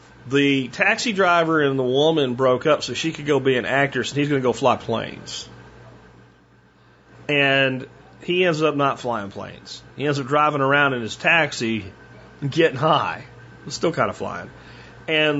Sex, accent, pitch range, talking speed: male, American, 115-150 Hz, 175 wpm